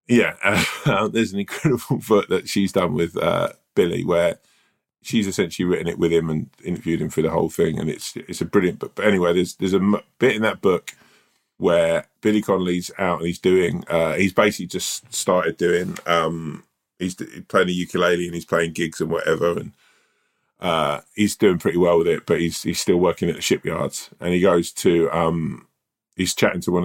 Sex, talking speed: male, 200 wpm